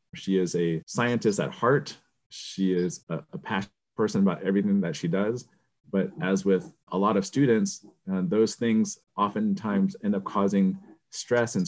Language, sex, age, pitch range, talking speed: English, male, 30-49, 90-130 Hz, 170 wpm